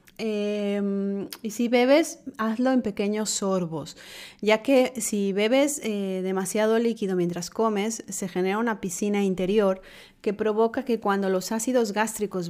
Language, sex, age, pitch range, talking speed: Spanish, female, 30-49, 185-220 Hz, 140 wpm